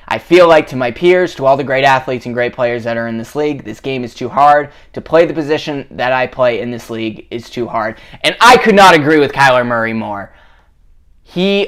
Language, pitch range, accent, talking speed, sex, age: English, 120-170 Hz, American, 240 wpm, male, 20-39